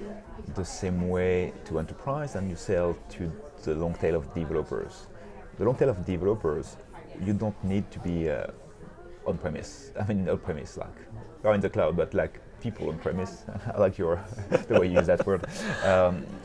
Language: English